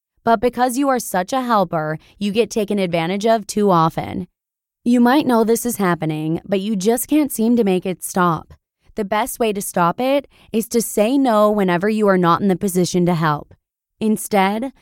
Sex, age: female, 20-39